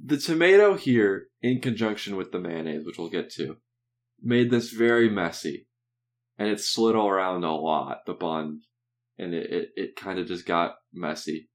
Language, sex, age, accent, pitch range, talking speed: English, male, 20-39, American, 100-120 Hz, 175 wpm